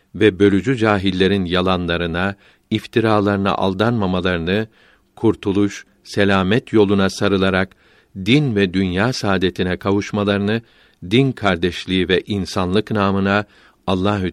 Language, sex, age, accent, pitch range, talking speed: Turkish, male, 60-79, native, 95-110 Hz, 90 wpm